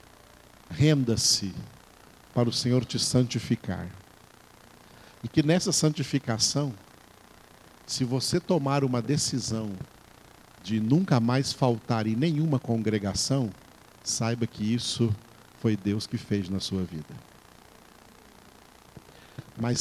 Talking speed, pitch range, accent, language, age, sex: 100 wpm, 110-135 Hz, Brazilian, Portuguese, 50-69, male